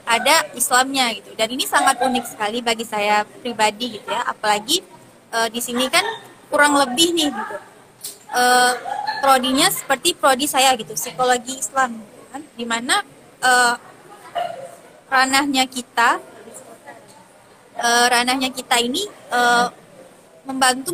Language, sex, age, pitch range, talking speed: Indonesian, female, 20-39, 230-280 Hz, 120 wpm